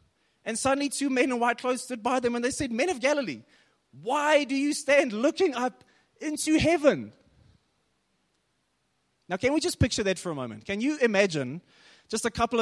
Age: 20-39